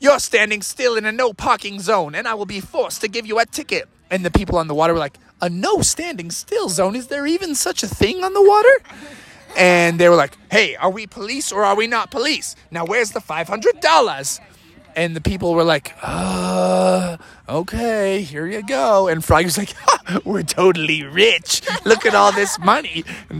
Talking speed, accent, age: 195 wpm, American, 20-39